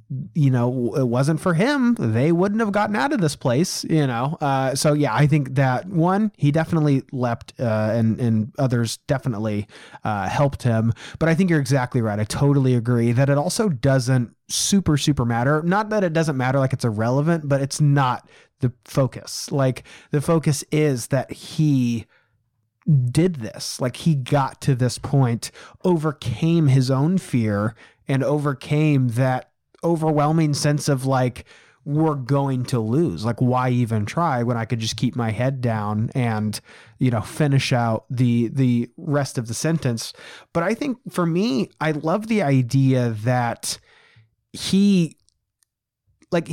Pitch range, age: 120-155 Hz, 30-49